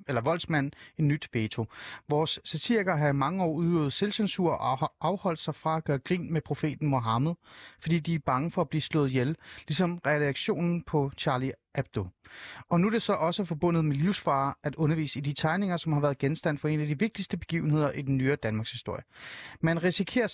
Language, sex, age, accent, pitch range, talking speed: Danish, male, 30-49, native, 135-175 Hz, 205 wpm